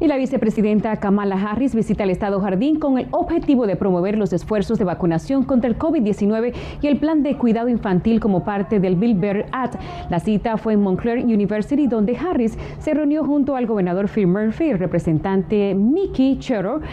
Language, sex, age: Spanish, female, 30-49